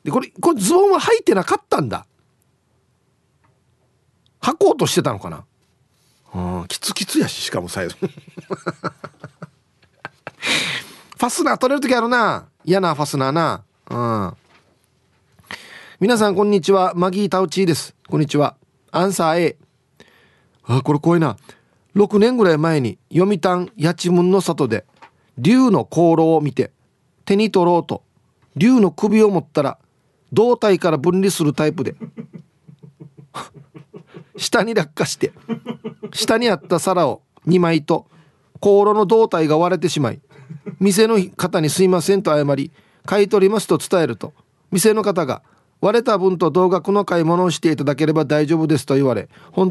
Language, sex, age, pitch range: Japanese, male, 40-59, 145-195 Hz